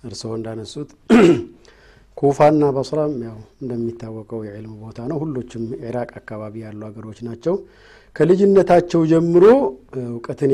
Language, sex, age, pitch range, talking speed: Amharic, male, 50-69, 115-155 Hz, 110 wpm